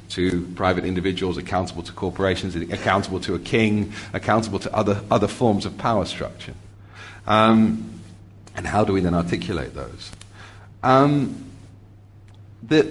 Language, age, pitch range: English, 40-59, 100-130 Hz